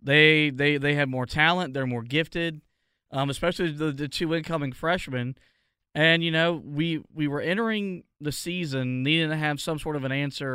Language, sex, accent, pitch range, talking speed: English, male, American, 140-160 Hz, 190 wpm